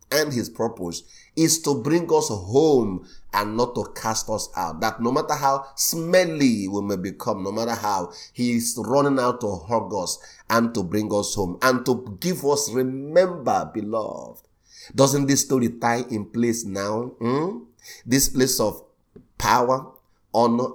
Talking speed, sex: 160 wpm, male